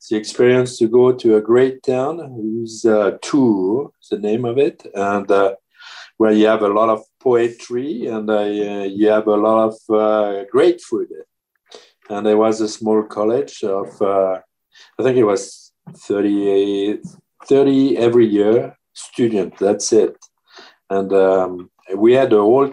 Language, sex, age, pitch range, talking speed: English, male, 50-69, 105-120 Hz, 155 wpm